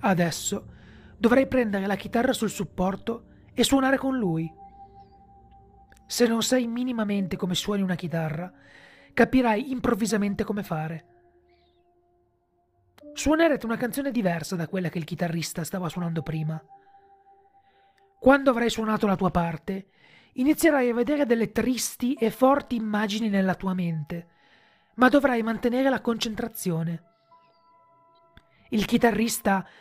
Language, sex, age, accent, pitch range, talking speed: Italian, male, 30-49, native, 190-250 Hz, 120 wpm